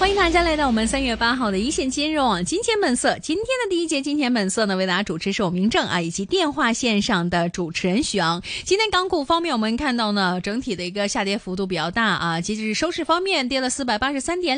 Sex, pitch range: female, 195-280 Hz